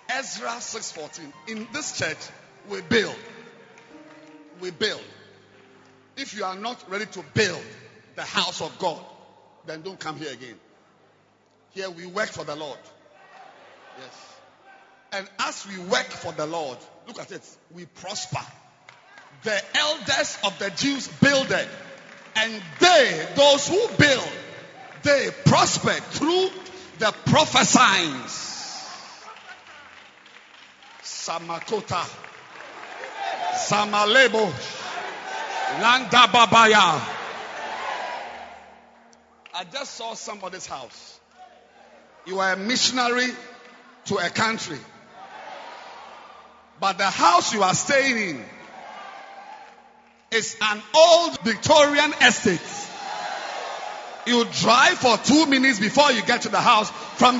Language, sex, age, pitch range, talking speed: English, male, 50-69, 200-285 Hz, 105 wpm